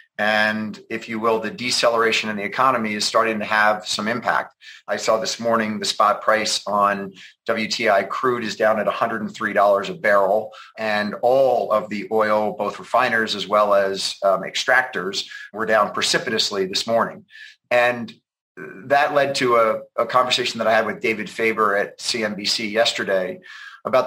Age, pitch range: 40-59, 100-115 Hz